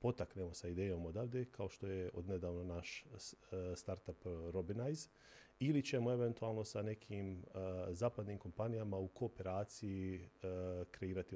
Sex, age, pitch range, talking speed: male, 40-59, 90-110 Hz, 110 wpm